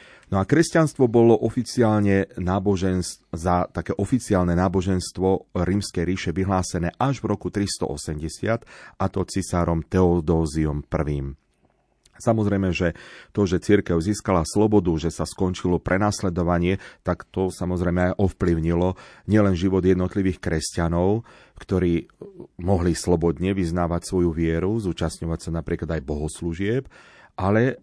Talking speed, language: 115 wpm, Slovak